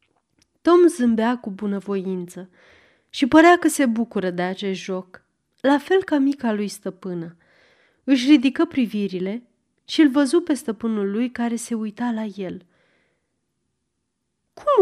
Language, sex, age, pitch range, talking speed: Romanian, female, 30-49, 190-255 Hz, 135 wpm